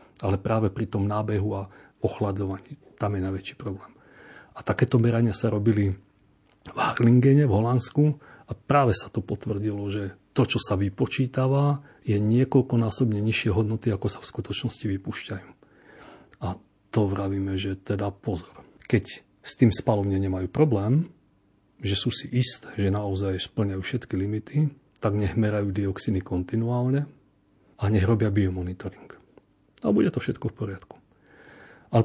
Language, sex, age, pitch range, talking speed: Slovak, male, 40-59, 100-115 Hz, 140 wpm